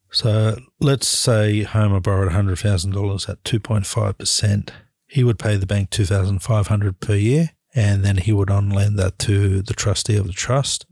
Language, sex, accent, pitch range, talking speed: English, male, Australian, 100-110 Hz, 160 wpm